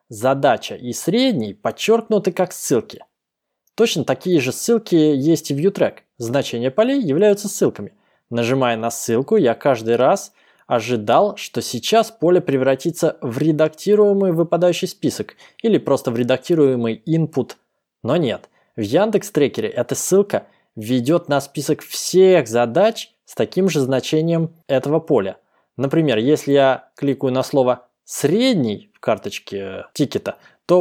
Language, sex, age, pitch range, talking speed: Russian, male, 20-39, 130-180 Hz, 130 wpm